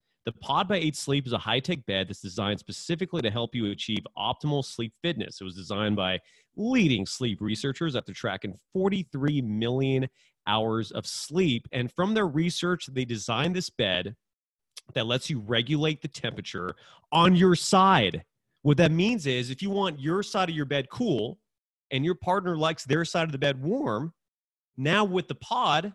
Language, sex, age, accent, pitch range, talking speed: English, male, 30-49, American, 110-155 Hz, 180 wpm